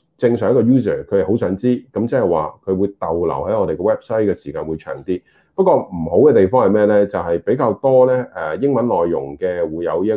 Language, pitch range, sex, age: Chinese, 90-130 Hz, male, 30-49